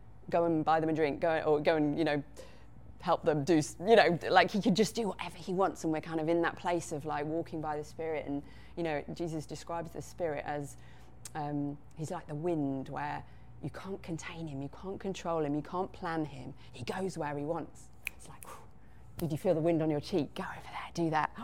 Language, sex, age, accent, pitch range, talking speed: English, female, 30-49, British, 150-175 Hz, 235 wpm